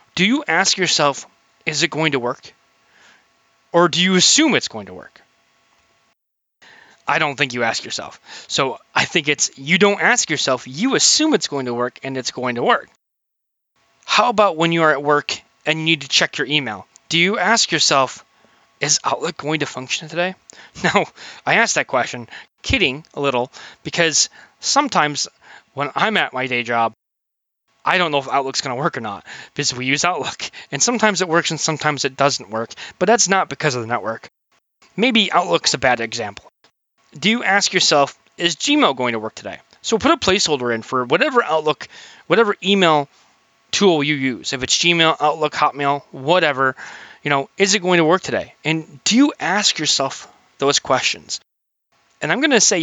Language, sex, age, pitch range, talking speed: English, male, 20-39, 135-185 Hz, 190 wpm